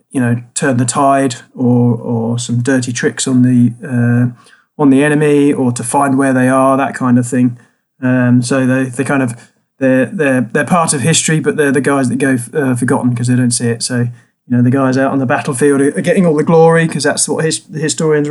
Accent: British